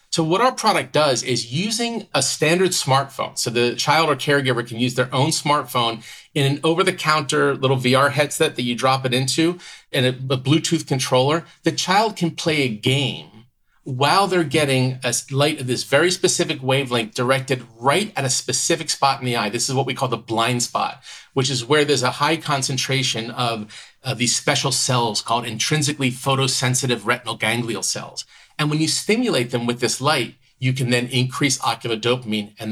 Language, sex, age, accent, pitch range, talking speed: English, male, 40-59, American, 125-155 Hz, 185 wpm